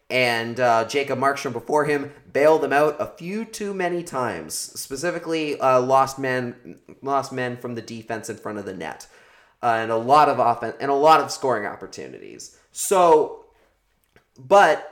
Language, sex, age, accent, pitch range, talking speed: English, male, 30-49, American, 125-175 Hz, 170 wpm